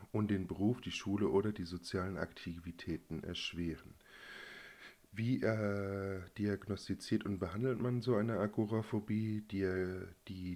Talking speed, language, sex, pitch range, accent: 120 wpm, German, male, 90-105 Hz, German